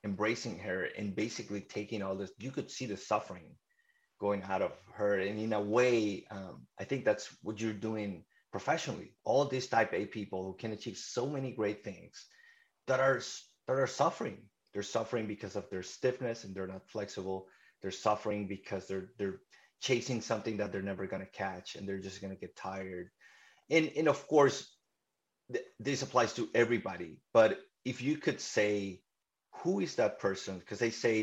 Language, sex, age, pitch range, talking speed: English, male, 30-49, 95-120 Hz, 185 wpm